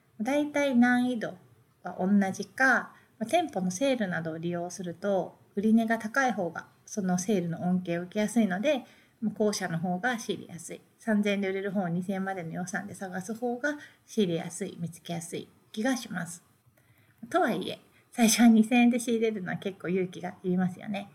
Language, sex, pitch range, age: Japanese, female, 185-240 Hz, 30-49